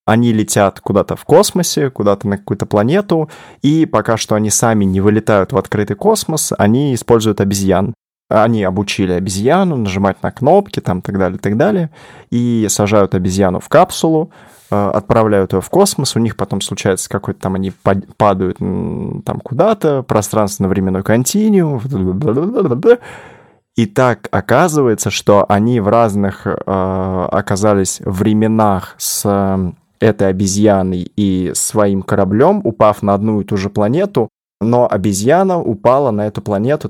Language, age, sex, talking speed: Russian, 20-39, male, 135 wpm